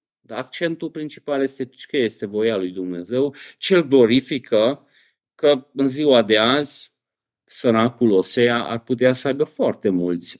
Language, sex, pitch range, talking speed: Romanian, male, 125-190 Hz, 140 wpm